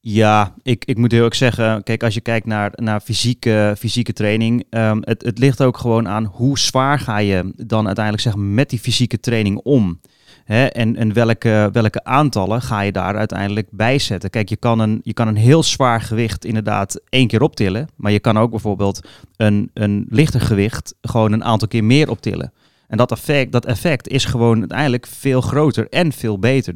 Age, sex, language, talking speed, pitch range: 30-49, male, Dutch, 195 wpm, 105-130 Hz